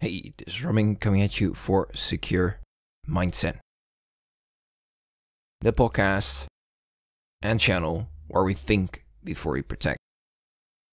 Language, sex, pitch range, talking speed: English, male, 85-110 Hz, 110 wpm